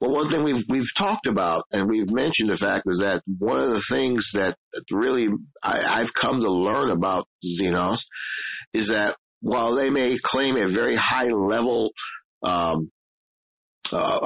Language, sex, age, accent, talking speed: English, male, 50-69, American, 165 wpm